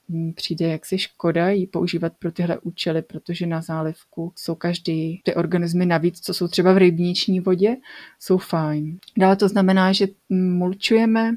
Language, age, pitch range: Czech, 30-49, 170-190 Hz